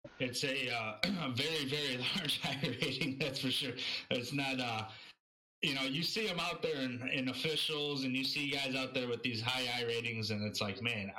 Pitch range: 105-130 Hz